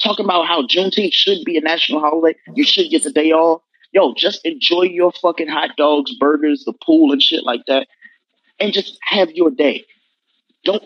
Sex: male